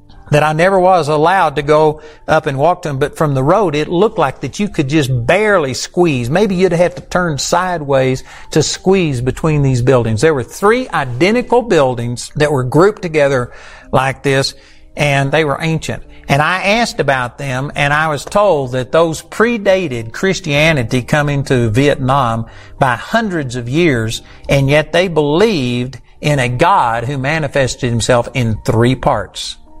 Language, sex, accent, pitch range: English, male, American, 130-170 Hz